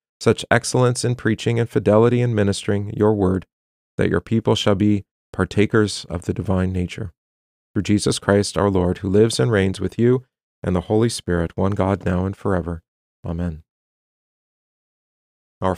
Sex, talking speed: male, 160 wpm